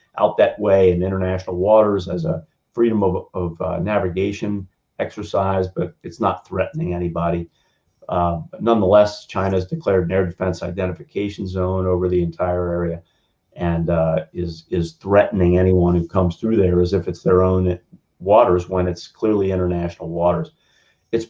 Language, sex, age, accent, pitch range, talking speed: English, male, 40-59, American, 90-100 Hz, 160 wpm